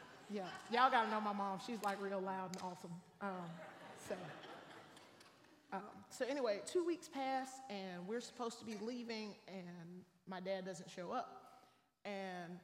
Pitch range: 185-225 Hz